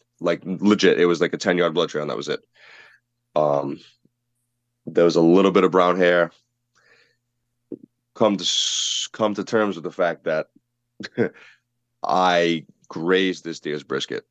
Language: English